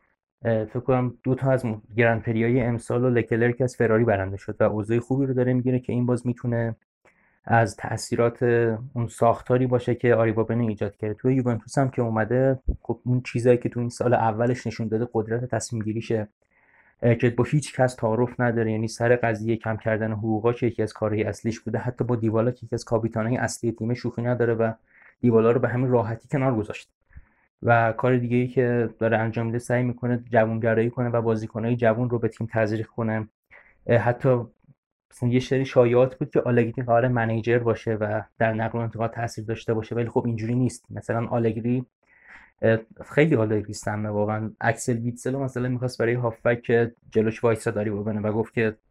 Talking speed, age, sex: 180 wpm, 20-39, male